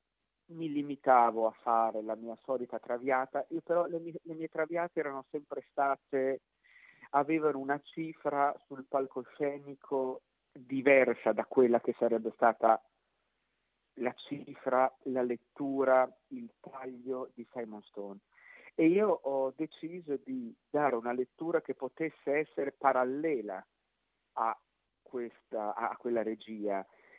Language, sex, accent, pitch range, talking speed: Italian, male, native, 130-160 Hz, 115 wpm